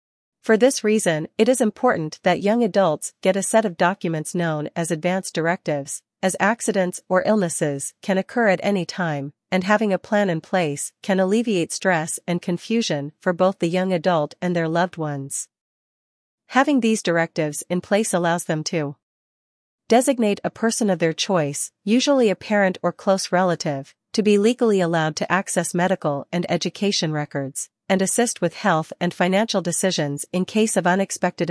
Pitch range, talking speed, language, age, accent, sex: 165-205 Hz, 170 wpm, English, 40-59, American, female